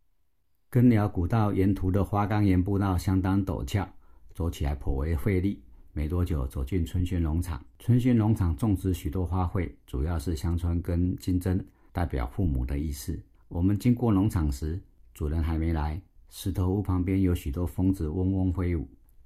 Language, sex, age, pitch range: Chinese, male, 50-69, 75-95 Hz